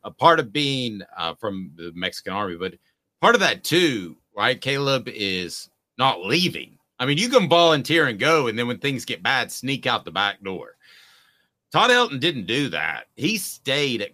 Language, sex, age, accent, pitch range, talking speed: English, male, 40-59, American, 100-145 Hz, 190 wpm